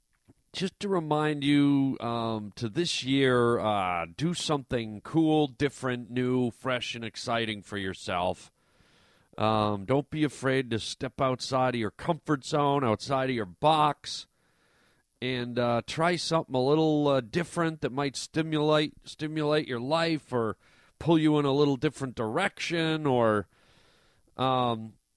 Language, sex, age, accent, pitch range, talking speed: English, male, 40-59, American, 120-150 Hz, 140 wpm